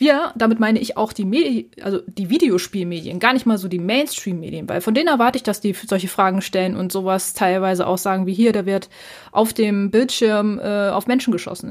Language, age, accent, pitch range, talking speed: German, 20-39, German, 195-245 Hz, 215 wpm